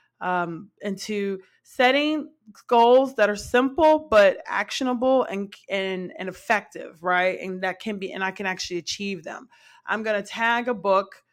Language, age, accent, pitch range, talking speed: English, 20-39, American, 180-220 Hz, 160 wpm